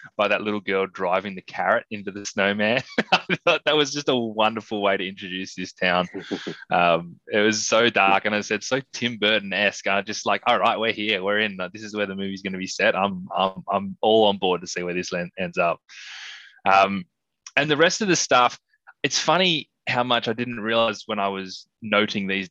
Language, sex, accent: English, male, Australian